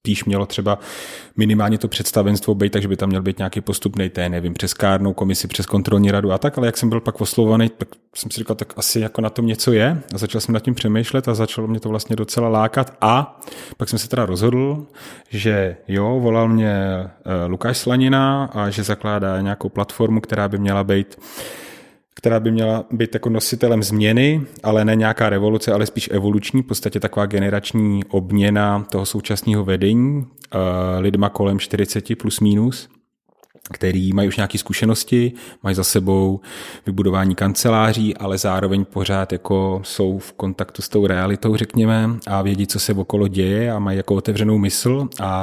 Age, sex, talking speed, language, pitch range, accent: 30-49, male, 180 wpm, Czech, 100-115 Hz, native